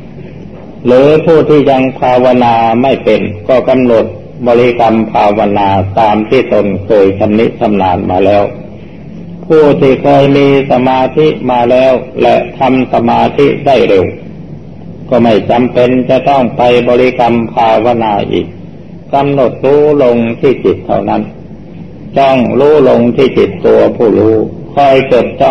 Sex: male